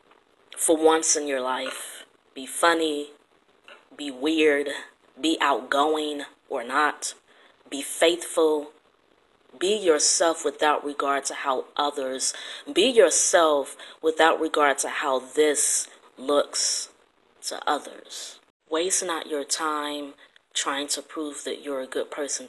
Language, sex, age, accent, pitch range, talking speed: English, female, 30-49, American, 140-165 Hz, 115 wpm